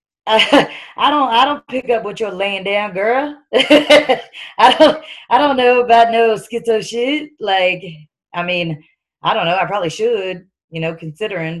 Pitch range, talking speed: 170-235 Hz, 165 wpm